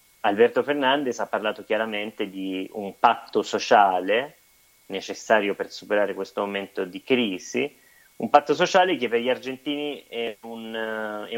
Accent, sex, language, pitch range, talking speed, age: native, male, Italian, 100-120 Hz, 135 wpm, 30-49